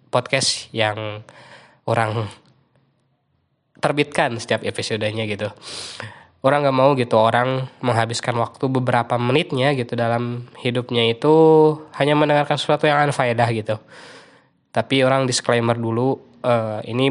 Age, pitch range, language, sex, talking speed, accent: 20-39, 115-135 Hz, Indonesian, male, 110 wpm, native